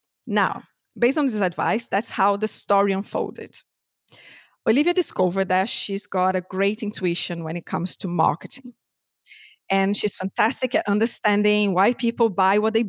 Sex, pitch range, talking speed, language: female, 190-235 Hz, 155 wpm, English